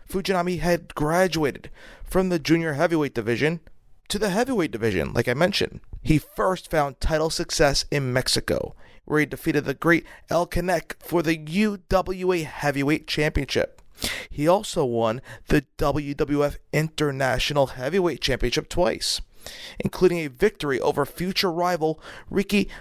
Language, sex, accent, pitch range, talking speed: English, male, American, 135-175 Hz, 130 wpm